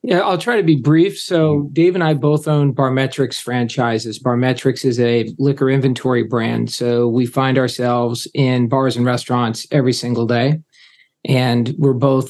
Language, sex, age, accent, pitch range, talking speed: English, male, 40-59, American, 130-155 Hz, 165 wpm